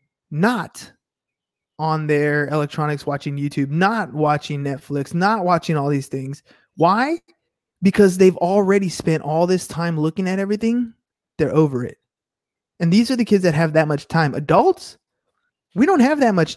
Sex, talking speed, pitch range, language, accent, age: male, 160 wpm, 155-205 Hz, English, American, 20-39